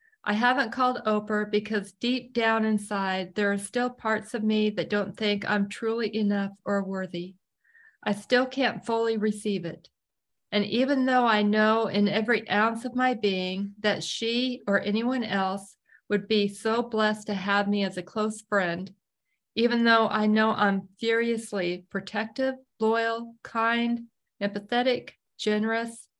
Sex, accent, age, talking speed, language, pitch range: female, American, 40-59, 150 wpm, English, 200-230 Hz